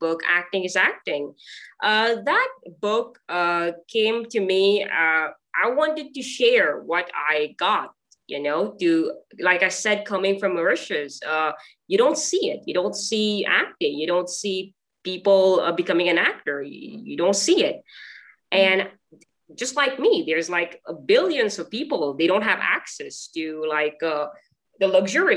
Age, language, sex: 20-39, English, female